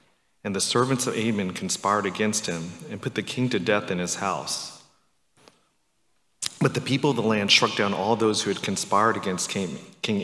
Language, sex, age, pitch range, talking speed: English, male, 40-59, 95-115 Hz, 190 wpm